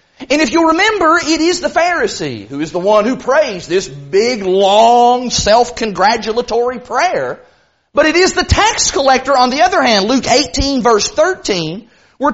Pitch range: 230-325 Hz